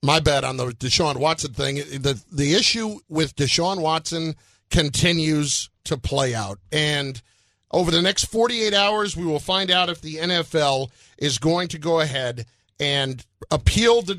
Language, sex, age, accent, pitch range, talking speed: English, male, 50-69, American, 140-195 Hz, 160 wpm